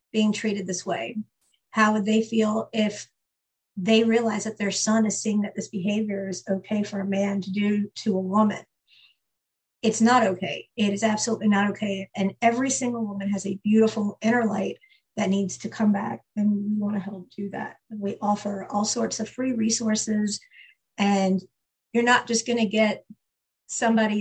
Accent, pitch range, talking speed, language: American, 195-220 Hz, 180 wpm, English